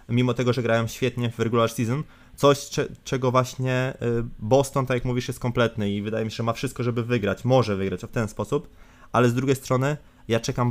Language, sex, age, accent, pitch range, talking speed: Polish, male, 20-39, native, 110-125 Hz, 205 wpm